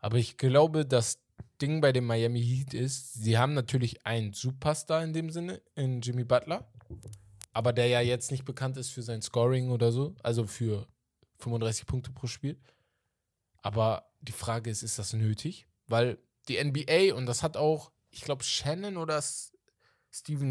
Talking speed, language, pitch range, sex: 170 wpm, German, 120-150 Hz, male